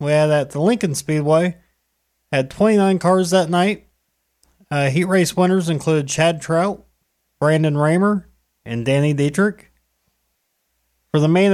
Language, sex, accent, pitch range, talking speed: English, male, American, 130-165 Hz, 135 wpm